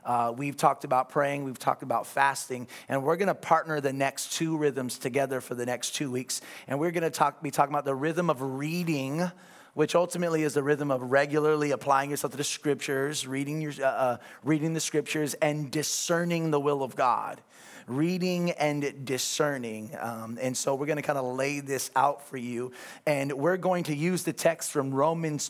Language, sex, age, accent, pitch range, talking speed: English, male, 30-49, American, 130-150 Hz, 200 wpm